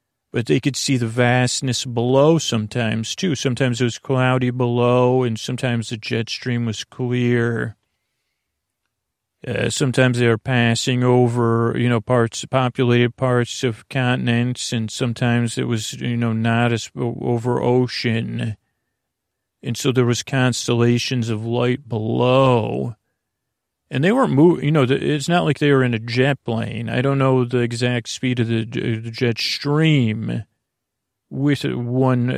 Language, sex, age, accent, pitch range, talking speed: English, male, 40-59, American, 115-130 Hz, 145 wpm